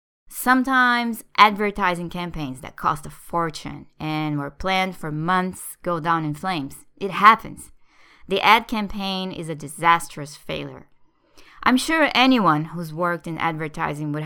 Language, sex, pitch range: English, female, 155-210 Hz